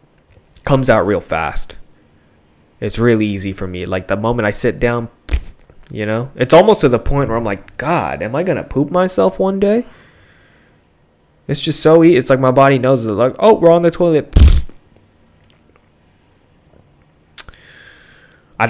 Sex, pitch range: male, 95-135 Hz